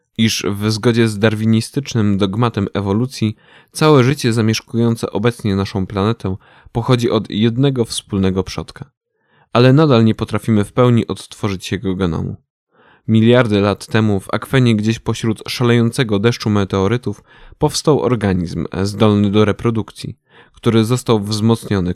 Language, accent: Polish, native